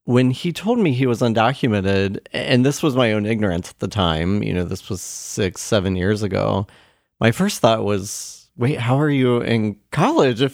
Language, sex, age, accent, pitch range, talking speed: English, male, 40-59, American, 105-135 Hz, 200 wpm